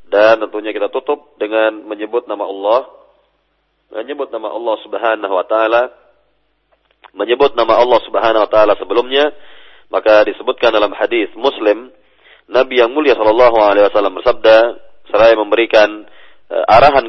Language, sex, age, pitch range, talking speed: Indonesian, male, 40-59, 105-135 Hz, 125 wpm